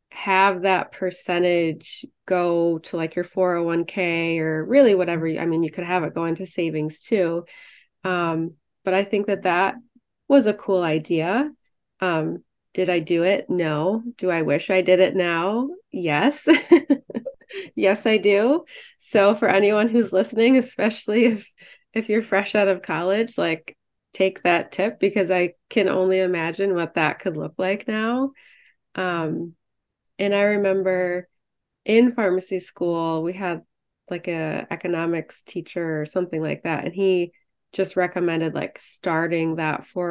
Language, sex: English, female